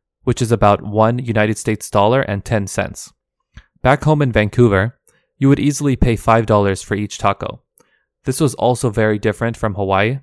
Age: 20-39